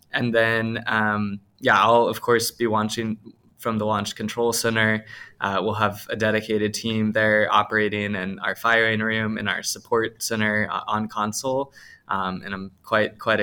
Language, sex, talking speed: English, male, 170 wpm